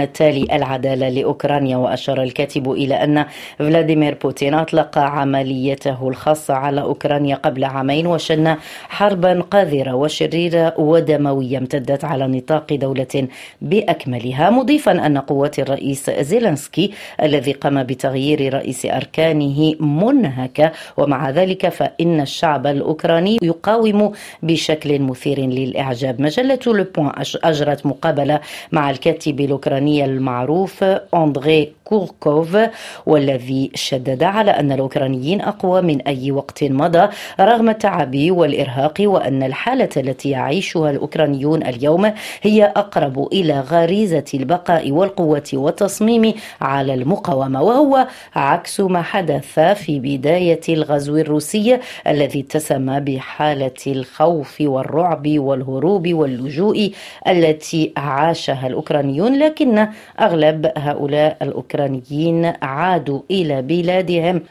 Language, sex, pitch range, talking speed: Arabic, female, 140-175 Hz, 100 wpm